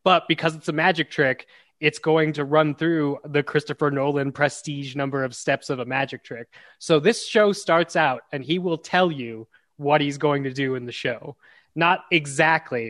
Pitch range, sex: 135-160 Hz, male